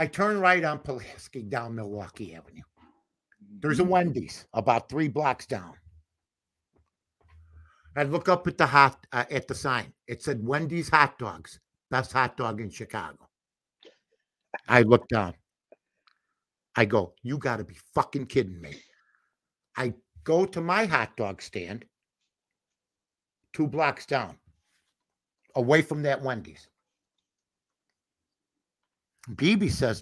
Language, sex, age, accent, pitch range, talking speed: English, male, 60-79, American, 110-180 Hz, 125 wpm